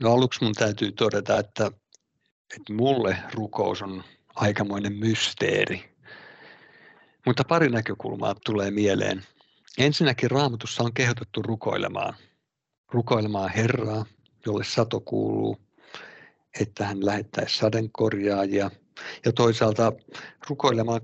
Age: 50-69